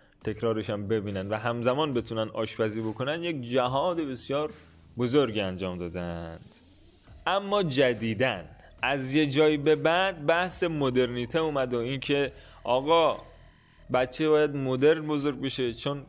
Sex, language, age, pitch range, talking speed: male, Persian, 20-39, 110-150 Hz, 125 wpm